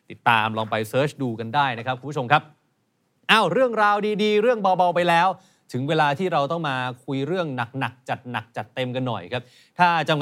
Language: Thai